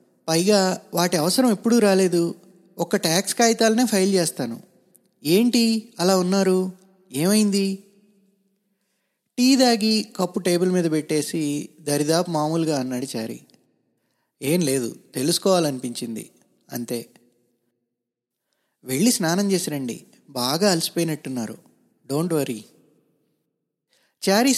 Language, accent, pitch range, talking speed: Telugu, native, 135-195 Hz, 90 wpm